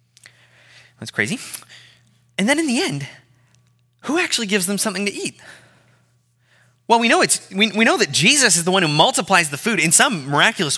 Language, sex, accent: English, male, American